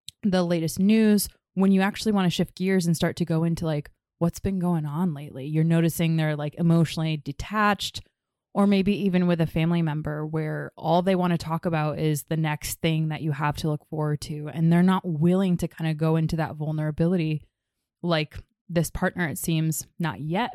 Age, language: 20-39, English